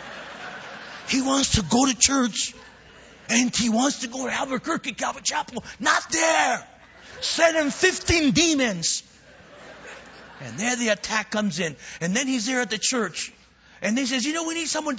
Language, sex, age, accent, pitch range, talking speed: English, male, 50-69, American, 185-260 Hz, 170 wpm